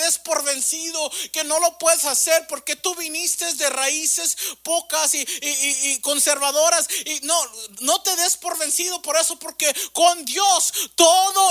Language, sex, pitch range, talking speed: English, male, 235-325 Hz, 160 wpm